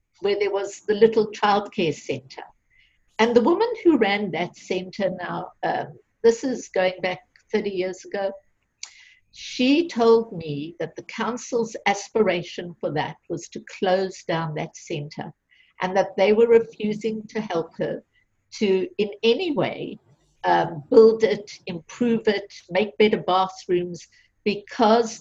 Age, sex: 60-79, female